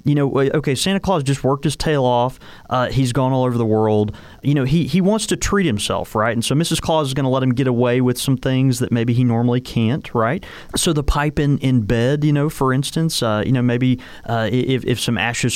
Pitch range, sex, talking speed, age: 105-140 Hz, male, 250 wpm, 30-49